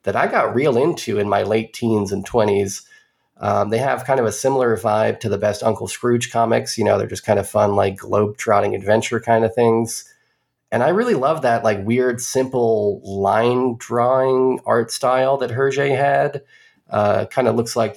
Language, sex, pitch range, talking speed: English, male, 110-130 Hz, 195 wpm